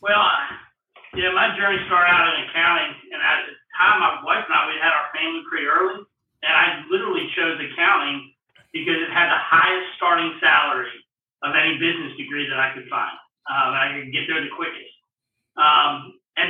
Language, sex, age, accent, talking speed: English, male, 40-59, American, 185 wpm